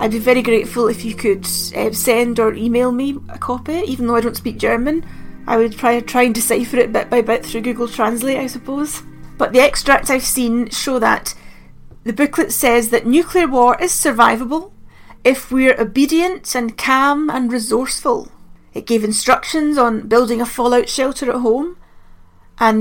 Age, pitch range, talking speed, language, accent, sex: 30-49, 230-265 Hz, 175 wpm, English, British, female